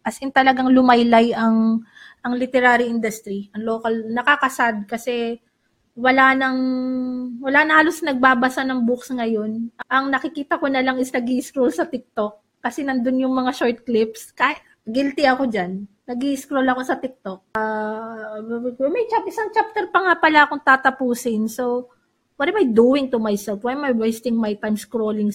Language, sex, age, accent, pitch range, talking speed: Filipino, female, 20-39, native, 225-275 Hz, 165 wpm